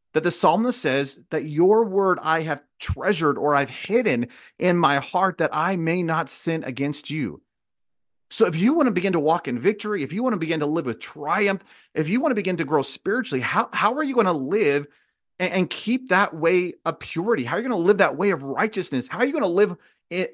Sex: male